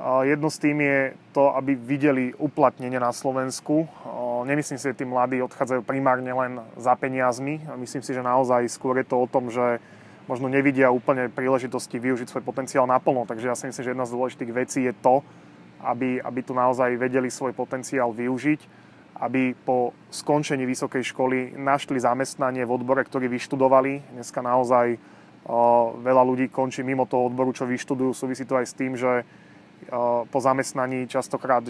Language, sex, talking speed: Slovak, male, 165 wpm